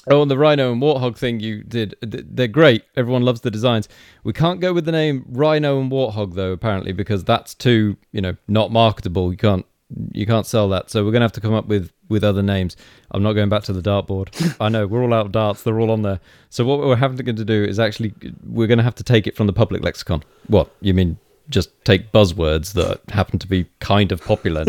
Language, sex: English, male